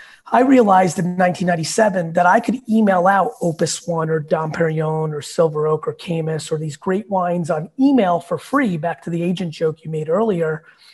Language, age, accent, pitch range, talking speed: English, 30-49, American, 175-225 Hz, 190 wpm